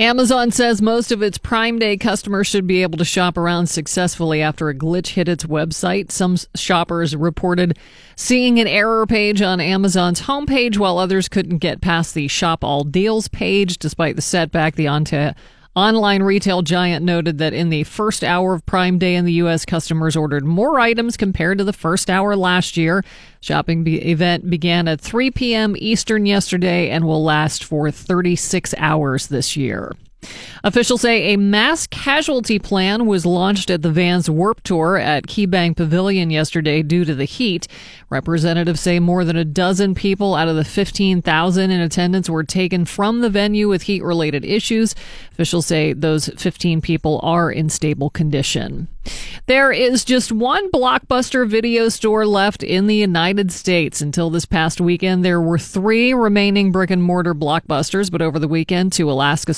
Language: English